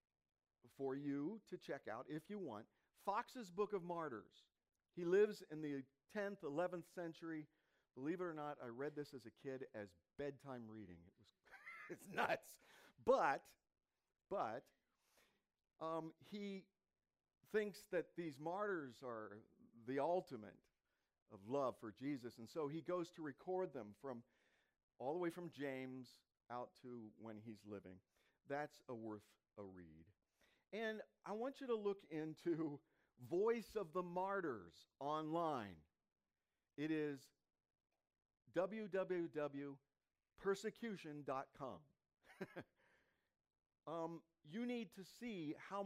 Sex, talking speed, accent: male, 125 wpm, American